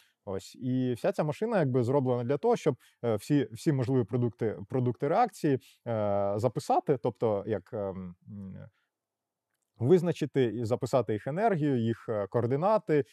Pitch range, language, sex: 110-145 Hz, Ukrainian, male